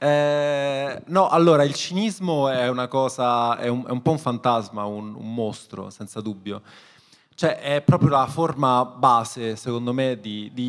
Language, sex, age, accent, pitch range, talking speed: Italian, male, 20-39, native, 115-140 Hz, 170 wpm